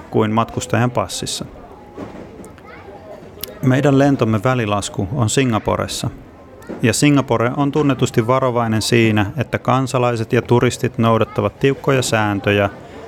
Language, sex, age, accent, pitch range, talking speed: Finnish, male, 30-49, native, 105-125 Hz, 95 wpm